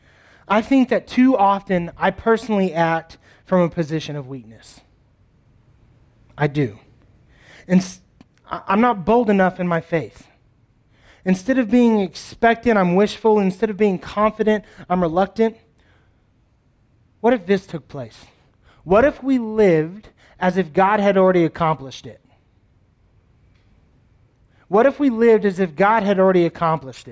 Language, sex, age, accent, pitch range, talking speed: English, male, 30-49, American, 120-200 Hz, 135 wpm